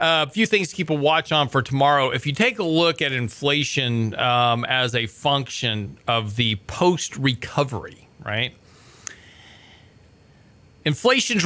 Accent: American